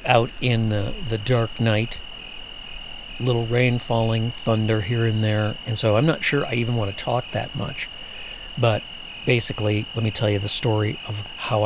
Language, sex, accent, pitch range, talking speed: English, male, American, 110-130 Hz, 180 wpm